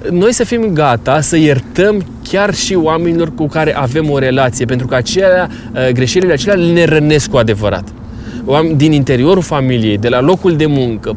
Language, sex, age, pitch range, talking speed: Romanian, male, 20-39, 125-160 Hz, 175 wpm